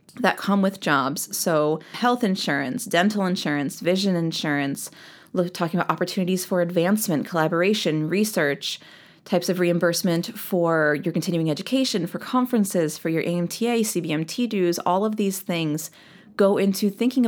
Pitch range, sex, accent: 180-230 Hz, female, American